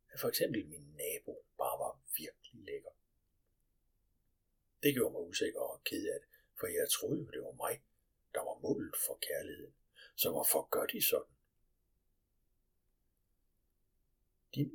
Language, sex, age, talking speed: Danish, male, 60-79, 140 wpm